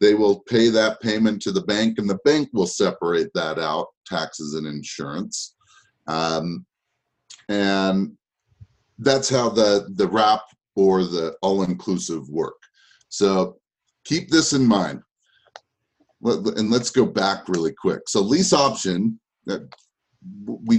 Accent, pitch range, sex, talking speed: American, 95-140 Hz, male, 125 wpm